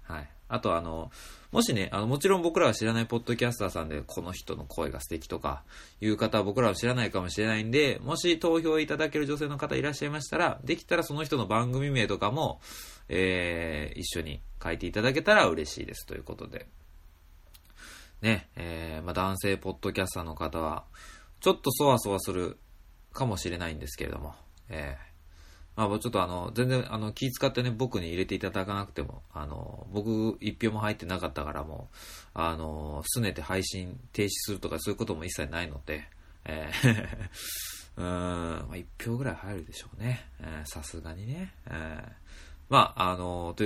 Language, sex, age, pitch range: Japanese, male, 20-39, 80-110 Hz